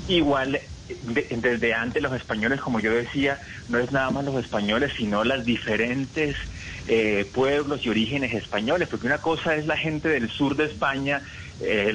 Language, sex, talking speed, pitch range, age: Spanish, male, 170 wpm, 105-130 Hz, 30-49